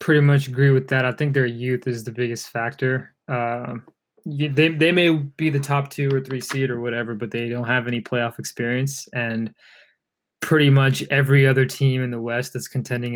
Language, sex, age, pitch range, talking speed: English, male, 20-39, 120-140 Hz, 200 wpm